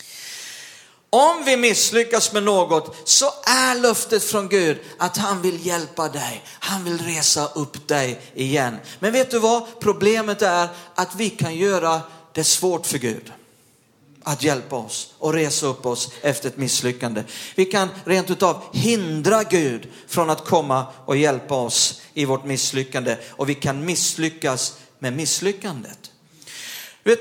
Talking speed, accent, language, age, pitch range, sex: 150 wpm, native, Swedish, 40-59, 150-215 Hz, male